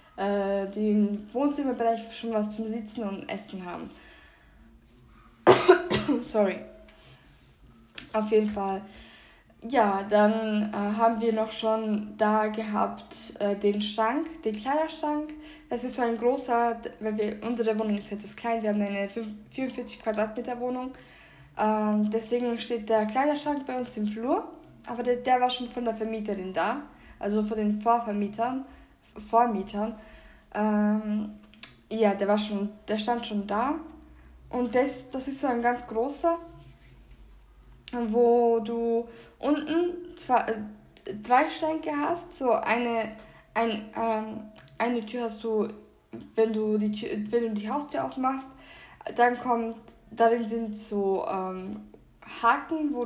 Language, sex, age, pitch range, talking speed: German, female, 10-29, 210-245 Hz, 130 wpm